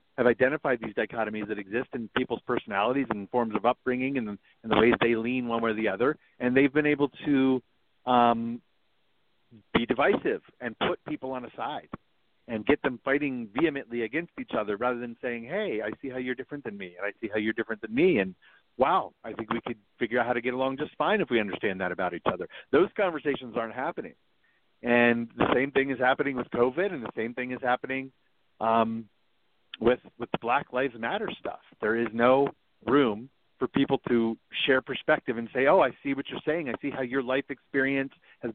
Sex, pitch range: male, 115-135 Hz